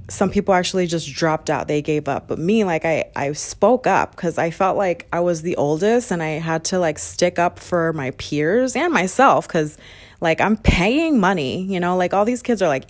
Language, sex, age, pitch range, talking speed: English, female, 20-39, 155-200 Hz, 230 wpm